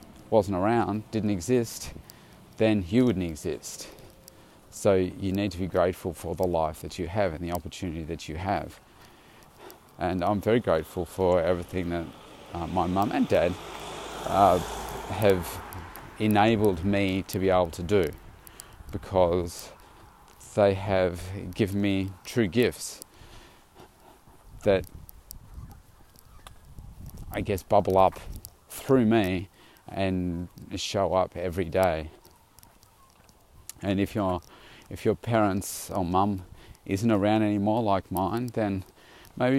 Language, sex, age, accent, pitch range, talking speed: English, male, 40-59, Australian, 90-105 Hz, 125 wpm